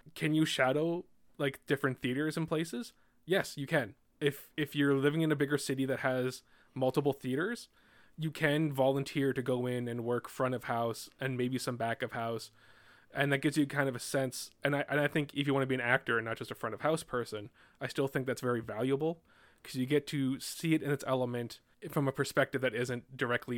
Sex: male